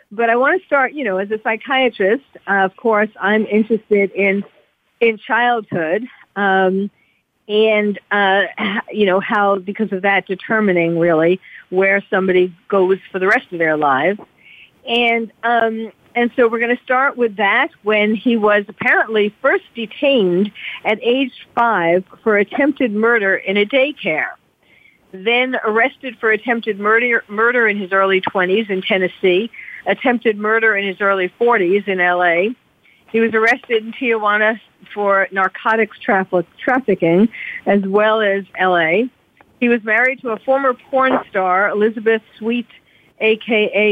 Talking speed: 145 wpm